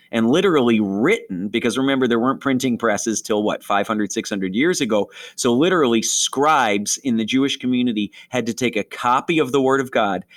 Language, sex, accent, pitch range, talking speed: English, male, American, 110-145 Hz, 185 wpm